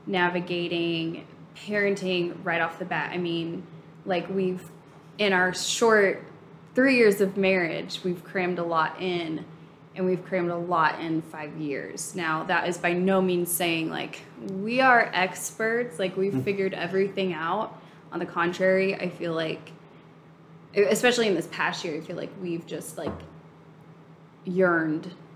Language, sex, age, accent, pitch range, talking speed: English, female, 10-29, American, 160-190 Hz, 150 wpm